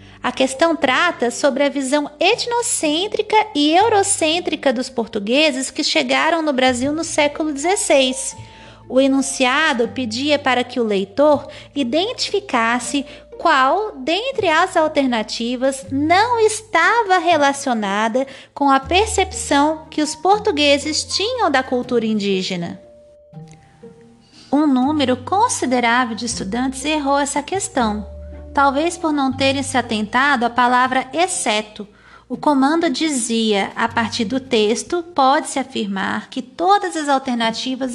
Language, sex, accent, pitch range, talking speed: Portuguese, female, Brazilian, 235-320 Hz, 115 wpm